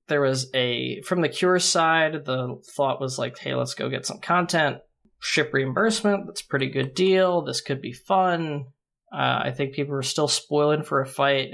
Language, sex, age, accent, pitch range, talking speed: English, male, 20-39, American, 135-185 Hz, 200 wpm